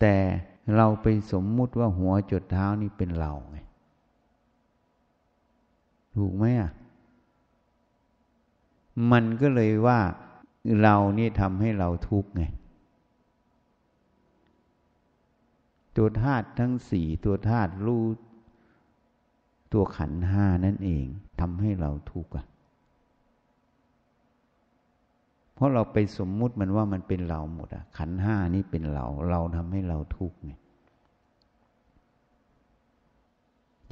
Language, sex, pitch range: Thai, male, 85-110 Hz